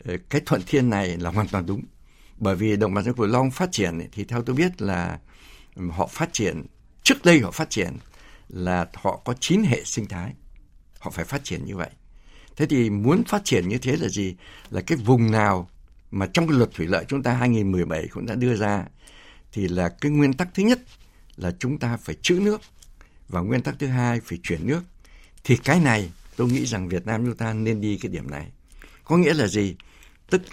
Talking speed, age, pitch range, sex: 215 wpm, 60-79, 90-135 Hz, male